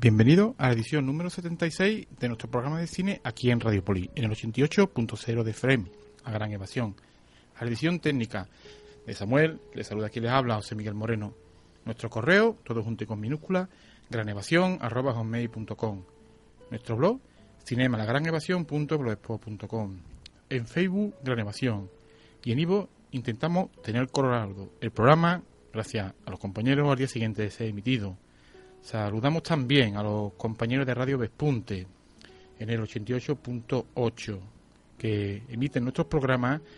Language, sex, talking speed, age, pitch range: Spanish, male, 140 wpm, 40-59, 110-135 Hz